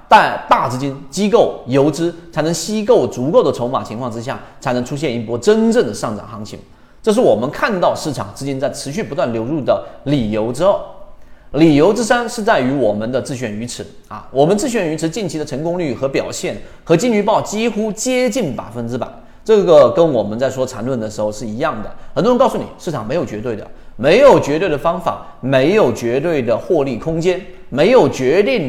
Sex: male